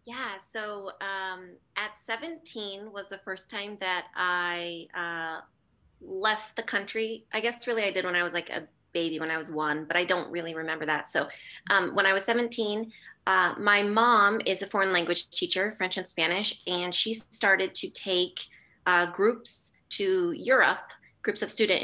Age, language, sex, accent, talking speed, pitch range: 20-39, English, female, American, 180 wpm, 180-220 Hz